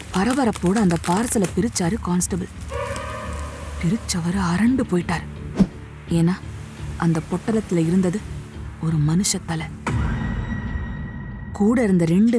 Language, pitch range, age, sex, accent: Tamil, 170-230 Hz, 20-39, female, native